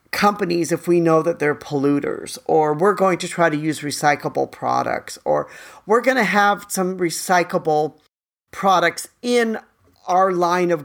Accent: American